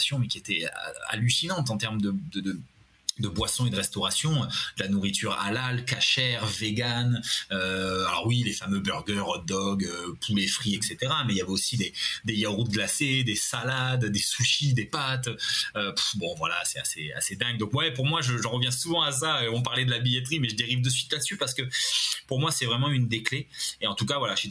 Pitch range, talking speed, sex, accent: 100-130 Hz, 220 wpm, male, French